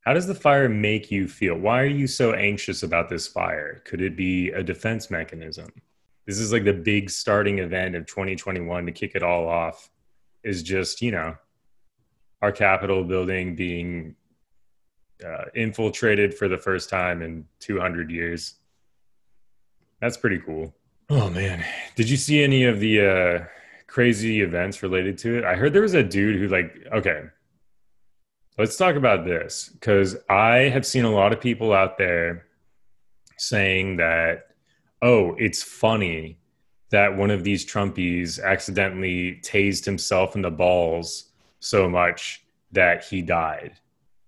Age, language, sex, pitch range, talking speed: 20-39, English, male, 90-110 Hz, 155 wpm